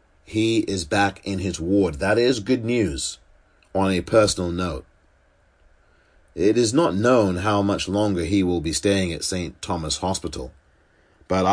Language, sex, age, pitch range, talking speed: English, male, 30-49, 80-100 Hz, 155 wpm